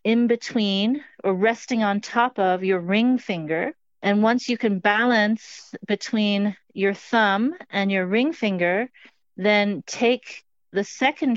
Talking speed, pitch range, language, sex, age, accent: 135 wpm, 195-240 Hz, English, female, 40-59, American